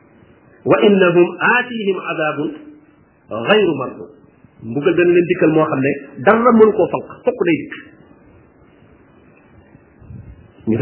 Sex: male